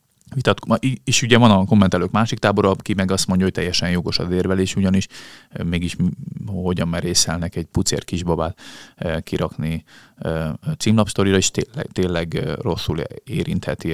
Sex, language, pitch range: male, Hungarian, 85-105 Hz